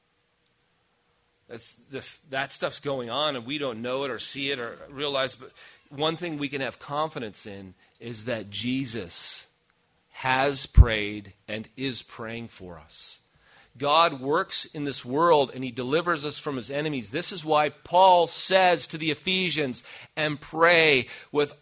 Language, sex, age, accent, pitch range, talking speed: English, male, 40-59, American, 135-165 Hz, 160 wpm